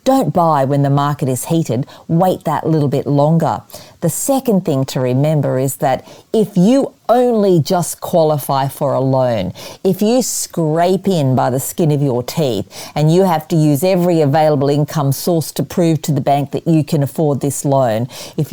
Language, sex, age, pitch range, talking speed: English, female, 40-59, 140-175 Hz, 190 wpm